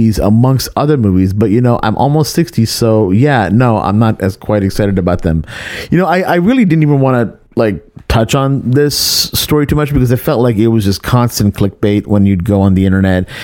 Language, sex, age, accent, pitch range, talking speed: English, male, 30-49, American, 95-120 Hz, 225 wpm